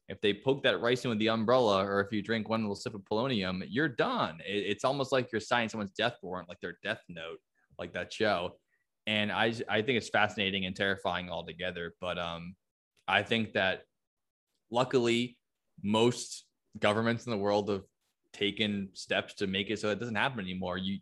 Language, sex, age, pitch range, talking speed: English, male, 20-39, 100-120 Hz, 190 wpm